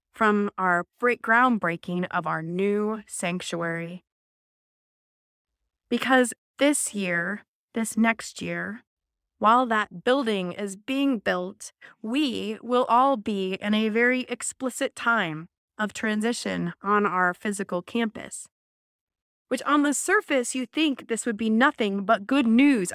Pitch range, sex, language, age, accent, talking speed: 205-275 Hz, female, English, 20-39, American, 125 wpm